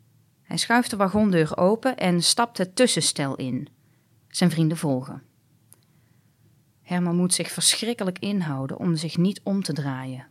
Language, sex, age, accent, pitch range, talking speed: Dutch, female, 30-49, Dutch, 145-215 Hz, 140 wpm